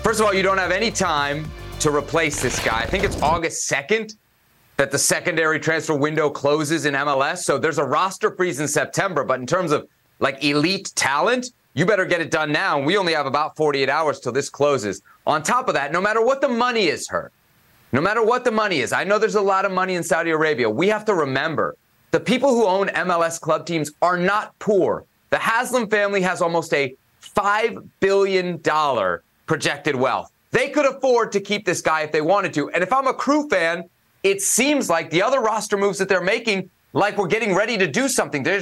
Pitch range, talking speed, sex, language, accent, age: 155-210 Hz, 220 wpm, male, English, American, 30-49